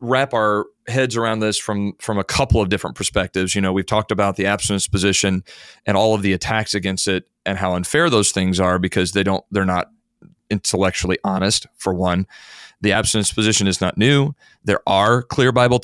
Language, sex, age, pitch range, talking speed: English, male, 40-59, 95-115 Hz, 195 wpm